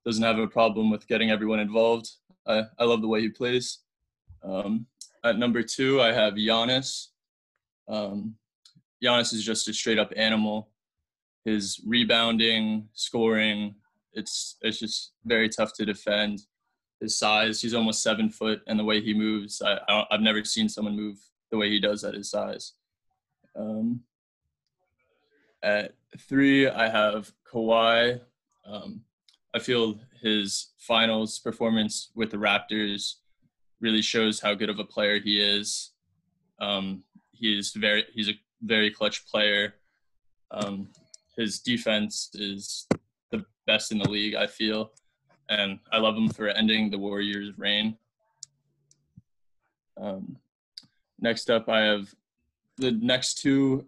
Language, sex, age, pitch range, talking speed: English, male, 20-39, 105-115 Hz, 140 wpm